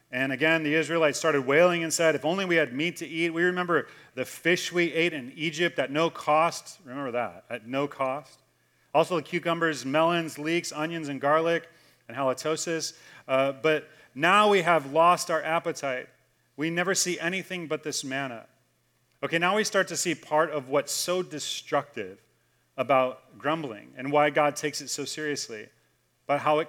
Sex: male